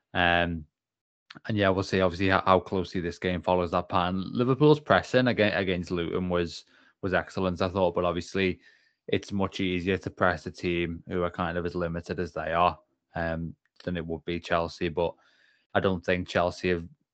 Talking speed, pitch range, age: 190 wpm, 85-95 Hz, 20-39